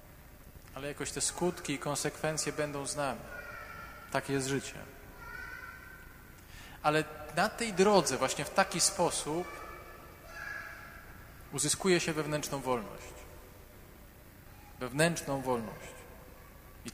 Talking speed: 95 wpm